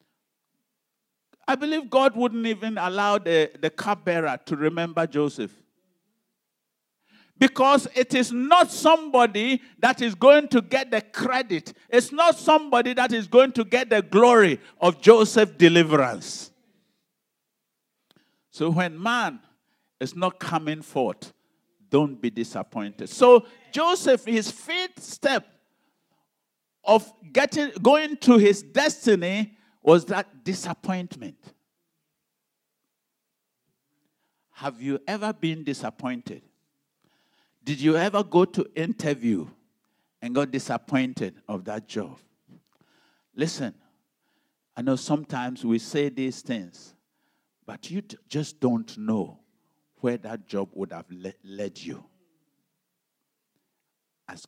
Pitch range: 150-240 Hz